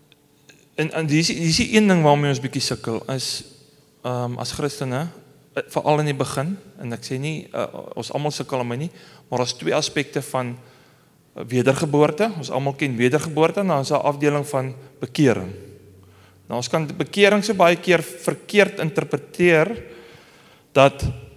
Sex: male